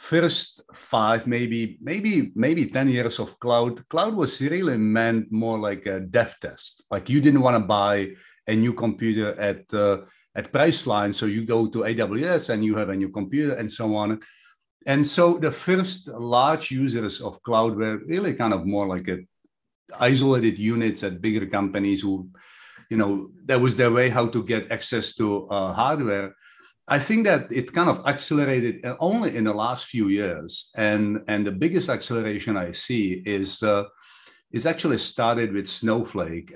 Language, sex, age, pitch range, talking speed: English, male, 50-69, 100-125 Hz, 175 wpm